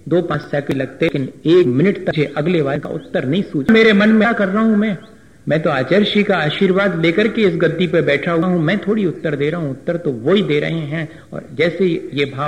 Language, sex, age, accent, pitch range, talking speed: Hindi, male, 50-69, native, 150-180 Hz, 105 wpm